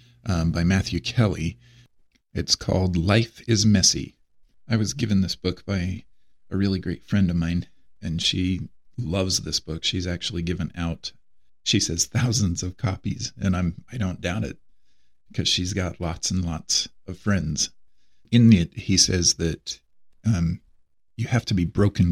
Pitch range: 85-105 Hz